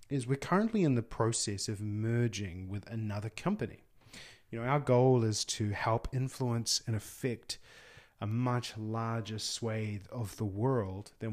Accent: Australian